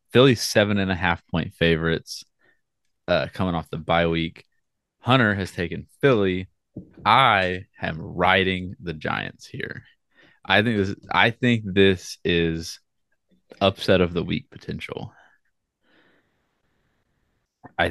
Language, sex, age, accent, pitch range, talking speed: English, male, 20-39, American, 95-130 Hz, 115 wpm